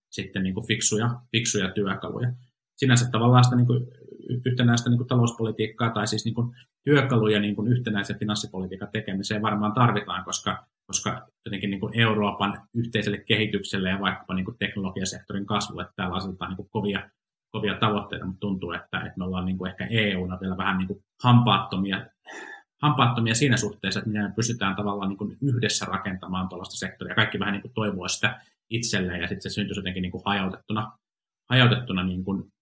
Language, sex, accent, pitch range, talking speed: Finnish, male, native, 100-115 Hz, 145 wpm